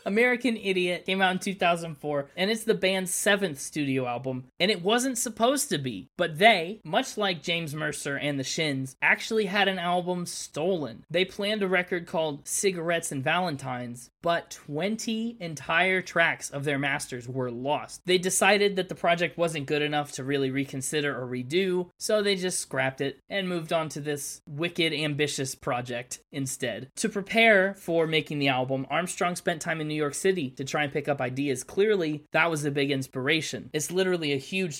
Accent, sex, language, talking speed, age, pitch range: American, male, English, 185 wpm, 20-39, 135-185 Hz